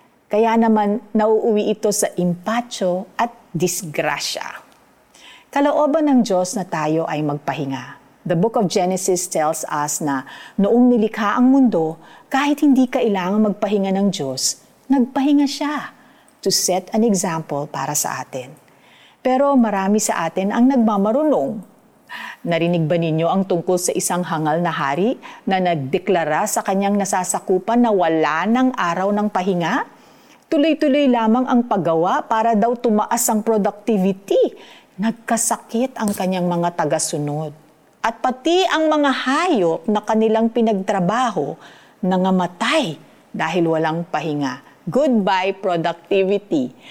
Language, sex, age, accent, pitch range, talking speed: Filipino, female, 50-69, native, 170-230 Hz, 125 wpm